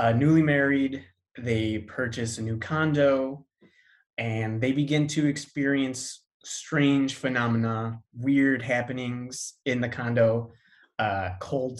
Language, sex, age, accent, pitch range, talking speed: English, male, 20-39, American, 110-140 Hz, 110 wpm